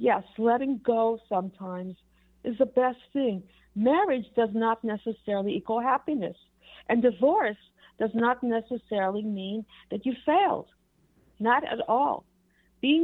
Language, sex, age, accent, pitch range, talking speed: English, female, 60-79, American, 195-255 Hz, 125 wpm